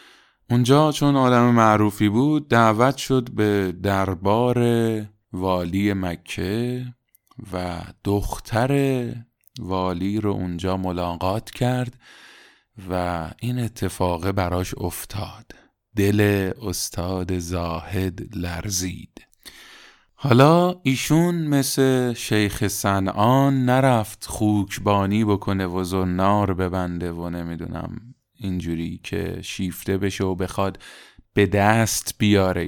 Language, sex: Persian, male